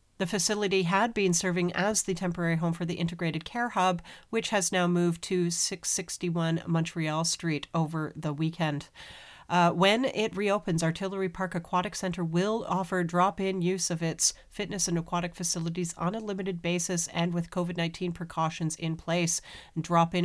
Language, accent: English, American